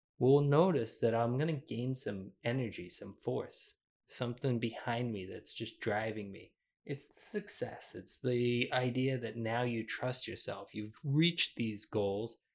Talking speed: 155 wpm